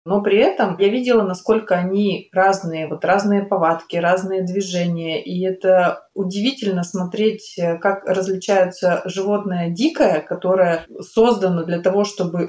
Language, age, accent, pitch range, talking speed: Russian, 20-39, native, 170-200 Hz, 125 wpm